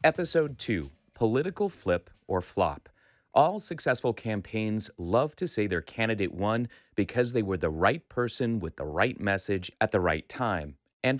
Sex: male